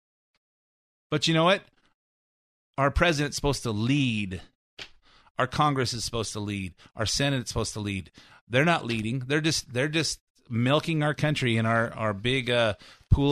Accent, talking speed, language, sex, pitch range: American, 160 wpm, English, male, 115-165 Hz